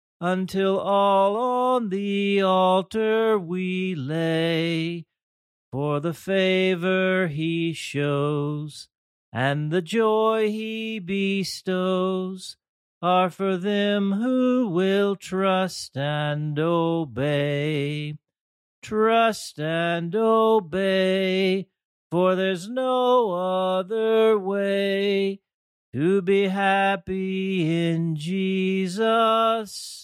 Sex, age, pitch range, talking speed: male, 40-59, 165-195 Hz, 75 wpm